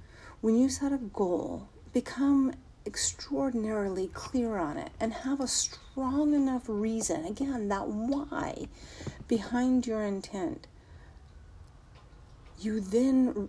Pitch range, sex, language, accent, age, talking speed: 190-245 Hz, female, English, American, 50-69, 105 wpm